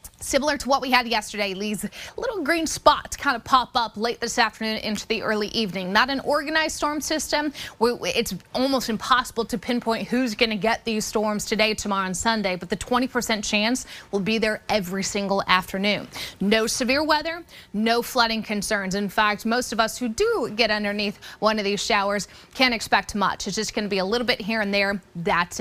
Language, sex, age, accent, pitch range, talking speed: English, female, 20-39, American, 205-245 Hz, 200 wpm